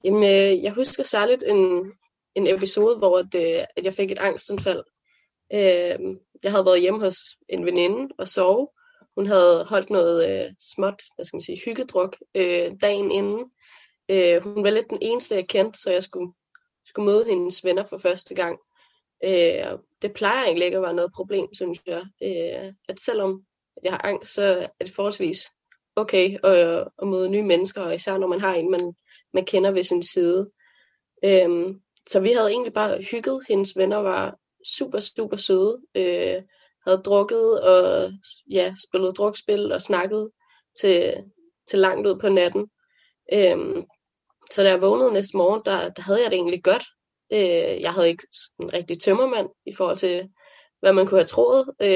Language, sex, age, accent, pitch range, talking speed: Danish, female, 20-39, native, 185-235 Hz, 160 wpm